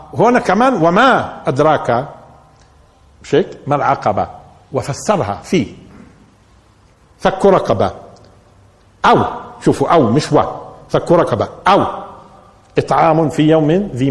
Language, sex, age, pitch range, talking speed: Arabic, male, 50-69, 120-175 Hz, 85 wpm